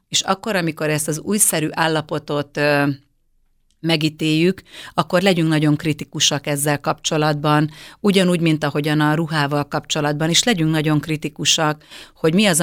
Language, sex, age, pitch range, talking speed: Hungarian, female, 30-49, 150-170 Hz, 130 wpm